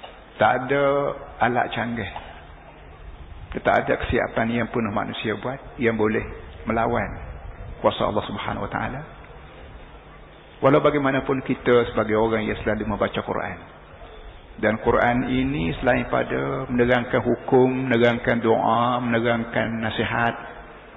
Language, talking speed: Malayalam, 110 wpm